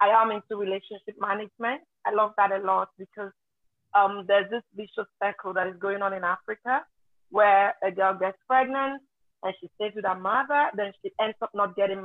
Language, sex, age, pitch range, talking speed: English, female, 30-49, 190-215 Hz, 195 wpm